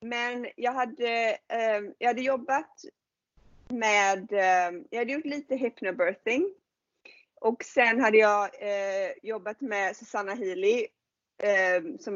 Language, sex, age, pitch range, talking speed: English, female, 30-49, 195-245 Hz, 105 wpm